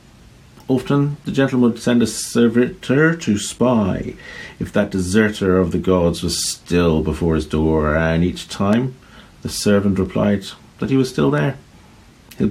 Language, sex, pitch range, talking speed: English, male, 85-110 Hz, 155 wpm